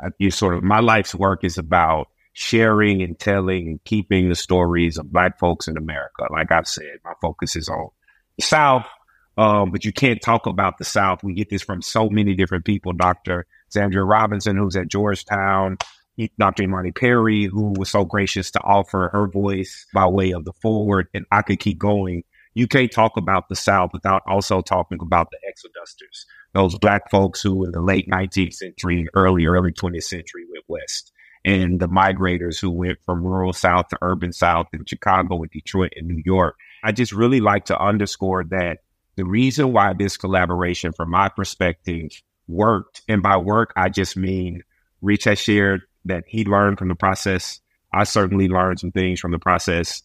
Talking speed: 185 wpm